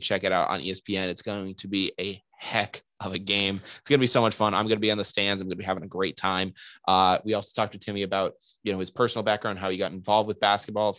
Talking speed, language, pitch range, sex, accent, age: 280 wpm, English, 95-110 Hz, male, American, 20-39